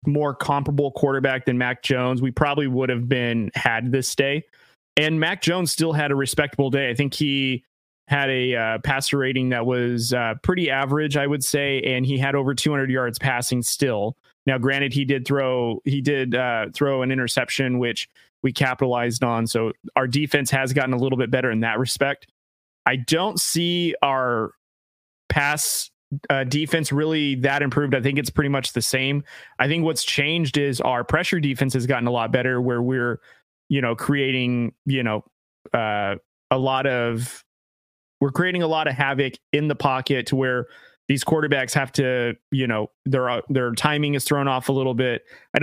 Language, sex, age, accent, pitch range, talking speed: English, male, 20-39, American, 125-145 Hz, 185 wpm